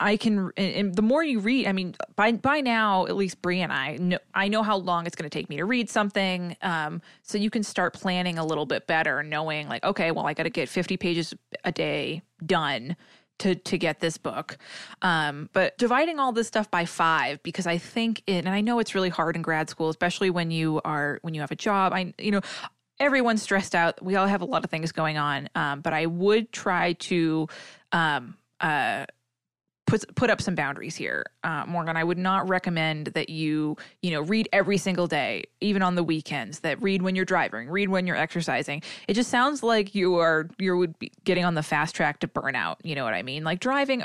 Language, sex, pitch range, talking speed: English, female, 160-200 Hz, 230 wpm